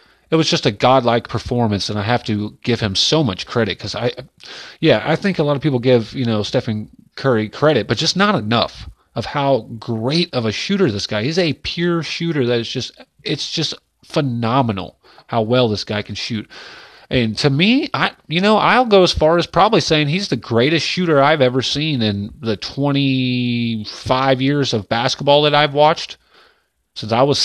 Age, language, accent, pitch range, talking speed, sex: 30-49, English, American, 115-160 Hz, 195 wpm, male